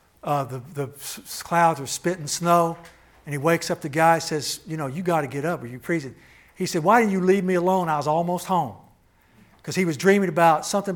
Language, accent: English, American